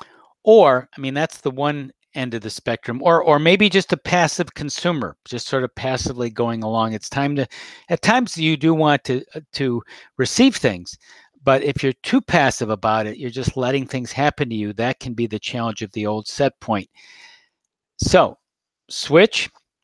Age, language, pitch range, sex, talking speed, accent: 50-69, English, 120-160 Hz, male, 185 wpm, American